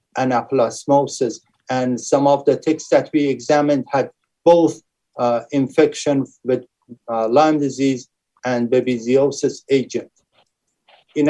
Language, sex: English, male